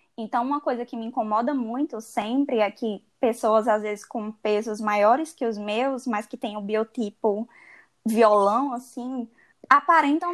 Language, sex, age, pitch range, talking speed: Portuguese, female, 10-29, 210-255 Hz, 155 wpm